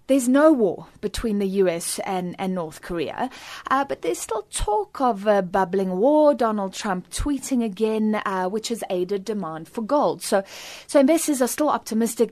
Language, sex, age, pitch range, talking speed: English, female, 30-49, 190-230 Hz, 175 wpm